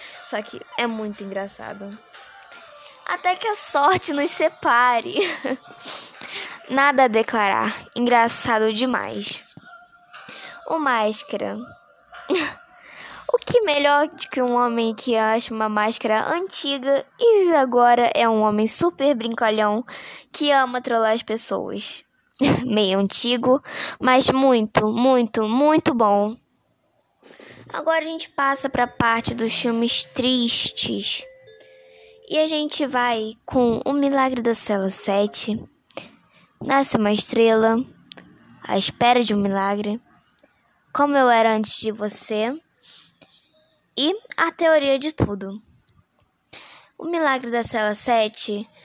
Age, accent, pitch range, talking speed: 10-29, Brazilian, 220-295 Hz, 115 wpm